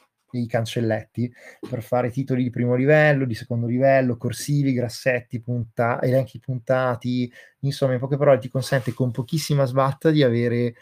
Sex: male